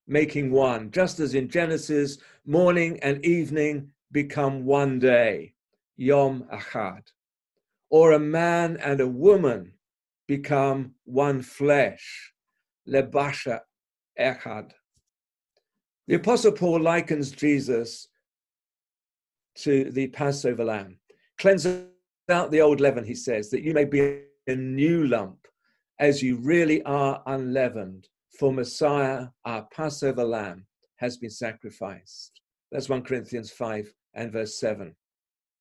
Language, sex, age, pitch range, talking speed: English, male, 50-69, 115-145 Hz, 115 wpm